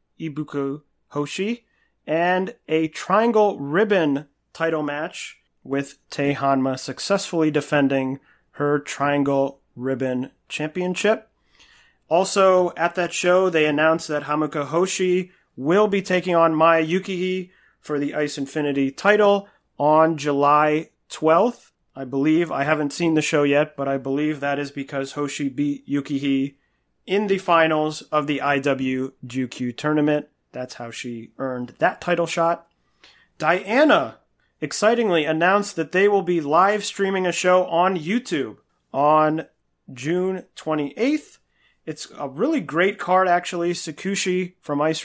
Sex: male